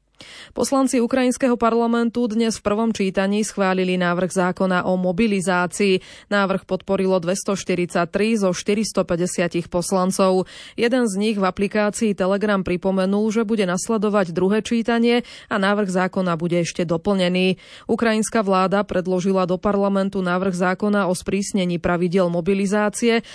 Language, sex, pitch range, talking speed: Slovak, female, 180-220 Hz, 120 wpm